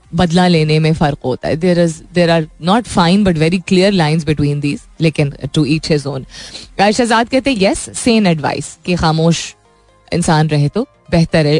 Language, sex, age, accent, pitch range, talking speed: Hindi, female, 20-39, native, 155-210 Hz, 145 wpm